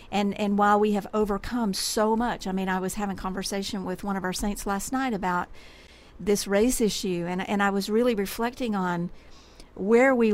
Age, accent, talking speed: 50-69, American, 195 wpm